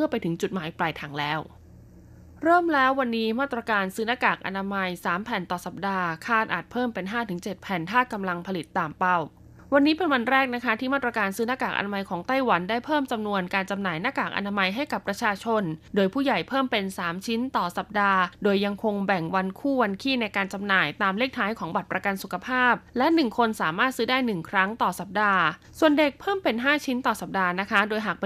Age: 20-39